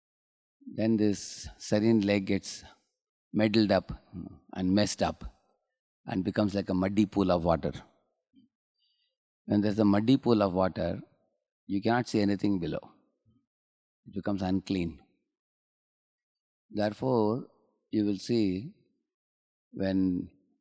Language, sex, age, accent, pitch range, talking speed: English, male, 30-49, Indian, 95-115 Hz, 115 wpm